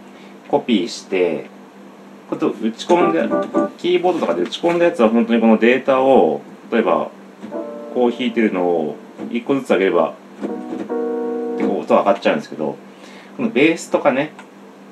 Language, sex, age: Japanese, male, 40-59